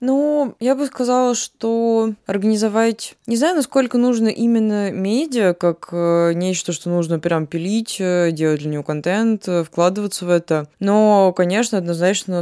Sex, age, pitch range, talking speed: female, 20-39, 155-180 Hz, 135 wpm